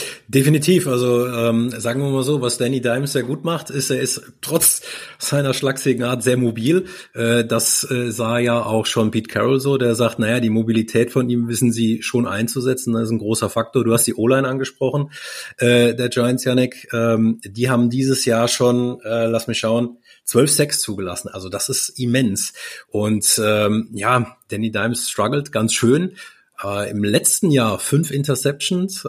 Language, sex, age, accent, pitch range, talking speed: German, male, 30-49, German, 110-135 Hz, 180 wpm